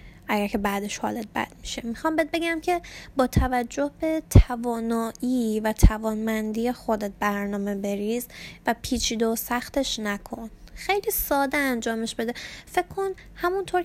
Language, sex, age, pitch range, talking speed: Persian, female, 10-29, 215-275 Hz, 135 wpm